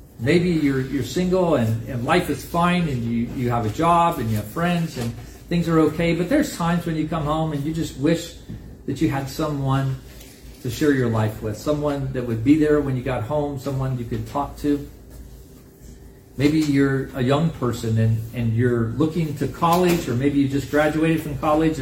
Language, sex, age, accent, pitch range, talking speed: English, male, 40-59, American, 125-155 Hz, 205 wpm